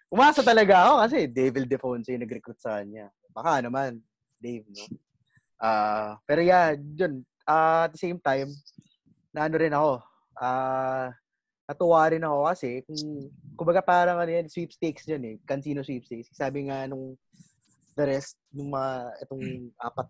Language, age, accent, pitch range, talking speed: English, 20-39, Filipino, 125-165 Hz, 145 wpm